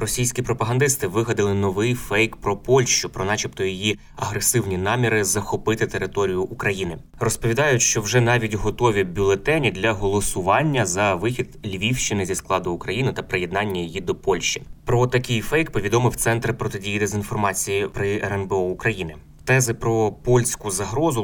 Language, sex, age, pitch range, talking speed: Ukrainian, male, 20-39, 95-120 Hz, 135 wpm